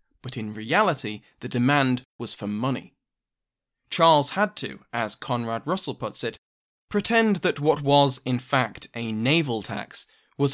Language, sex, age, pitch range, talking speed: English, male, 20-39, 115-140 Hz, 150 wpm